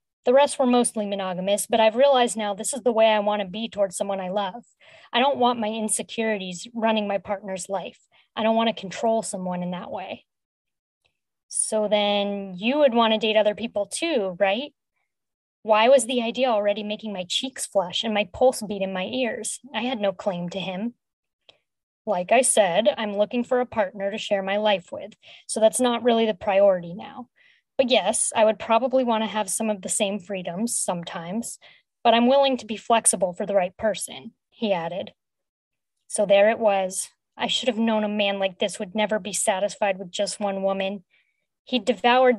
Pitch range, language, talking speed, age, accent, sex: 195-230 Hz, English, 195 wpm, 20-39, American, female